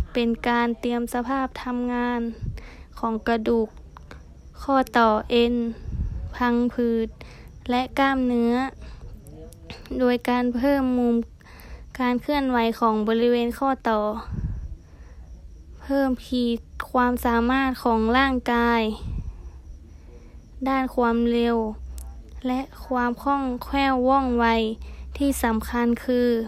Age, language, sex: 20-39, Thai, female